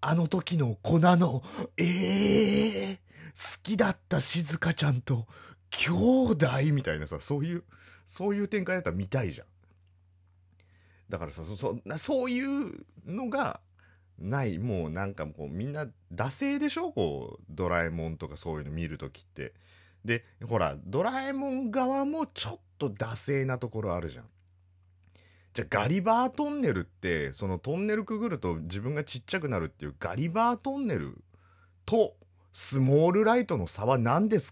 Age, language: 30-49, Japanese